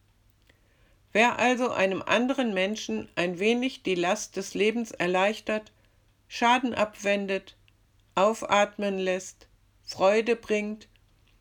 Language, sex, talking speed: German, female, 95 wpm